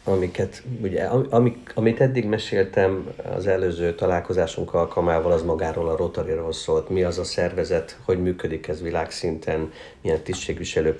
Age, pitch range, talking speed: 60-79, 80-120 Hz, 135 wpm